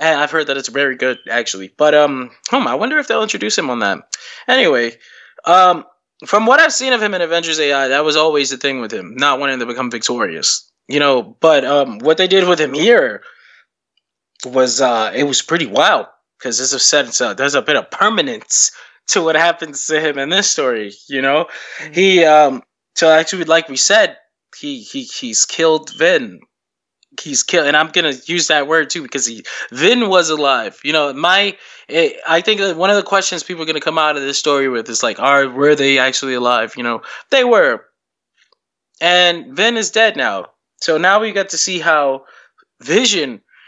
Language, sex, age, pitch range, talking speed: English, male, 20-39, 140-180 Hz, 200 wpm